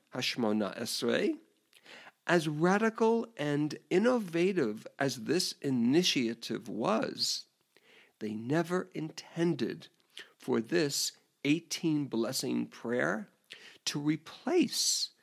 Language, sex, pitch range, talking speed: English, male, 125-185 Hz, 75 wpm